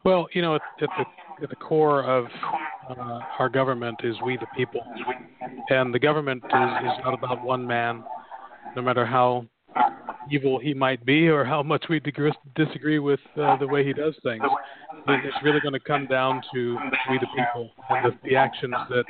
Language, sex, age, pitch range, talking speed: English, male, 40-59, 125-150 Hz, 190 wpm